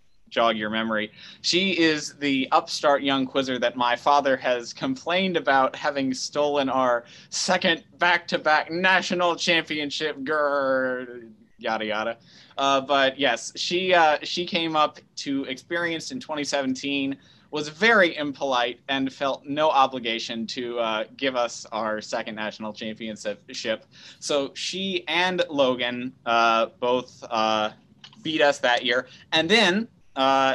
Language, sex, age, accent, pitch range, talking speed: English, male, 20-39, American, 120-155 Hz, 130 wpm